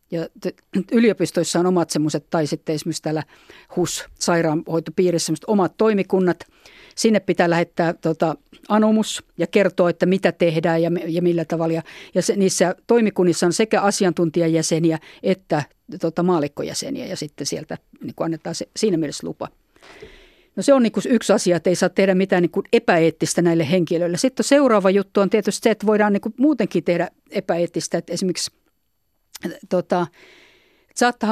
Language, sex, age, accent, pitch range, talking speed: Finnish, female, 50-69, native, 165-210 Hz, 145 wpm